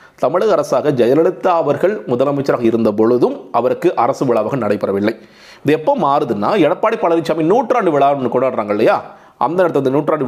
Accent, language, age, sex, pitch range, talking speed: native, Tamil, 30-49, male, 135-185 Hz, 135 wpm